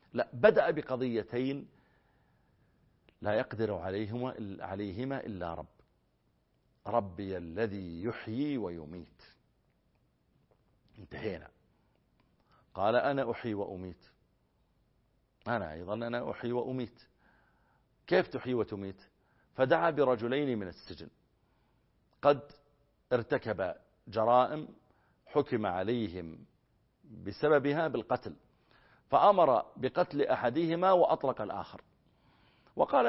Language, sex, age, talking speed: Arabic, male, 50-69, 75 wpm